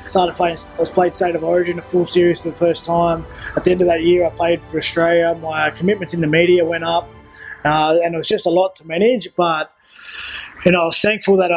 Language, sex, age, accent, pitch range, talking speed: English, male, 20-39, Australian, 160-185 Hz, 250 wpm